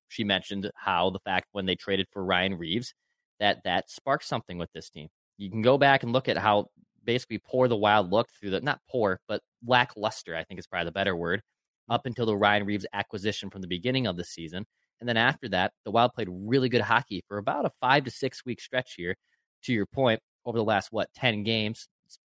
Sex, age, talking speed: male, 20-39, 230 wpm